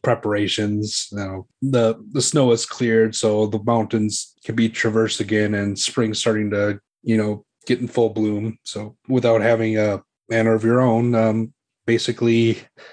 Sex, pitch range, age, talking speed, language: male, 110-125 Hz, 30-49, 160 wpm, English